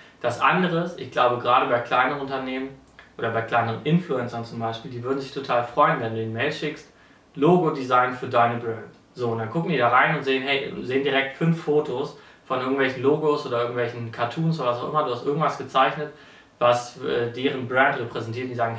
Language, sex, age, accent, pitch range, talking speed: German, male, 30-49, German, 120-145 Hz, 210 wpm